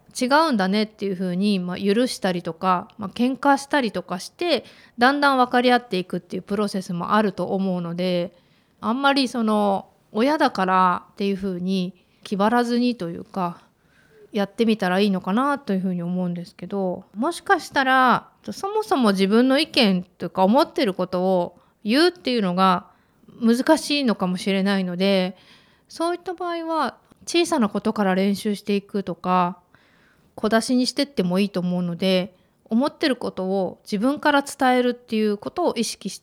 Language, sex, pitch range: Japanese, female, 185-255 Hz